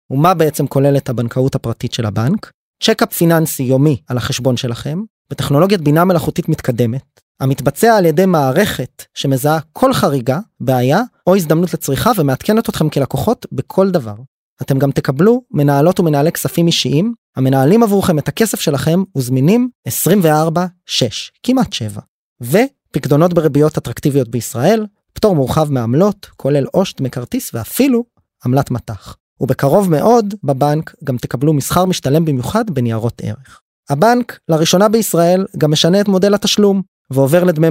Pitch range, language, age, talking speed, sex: 135-190 Hz, Hebrew, 20-39, 130 wpm, male